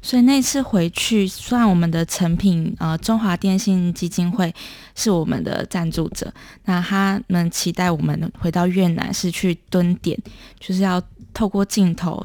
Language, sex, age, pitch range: Chinese, female, 20-39, 165-190 Hz